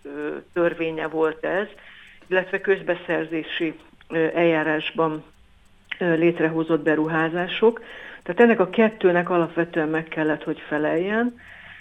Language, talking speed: Hungarian, 85 wpm